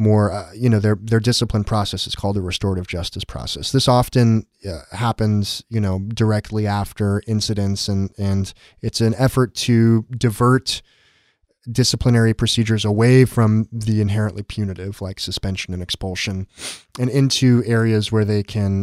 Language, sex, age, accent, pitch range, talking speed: English, male, 30-49, American, 100-115 Hz, 150 wpm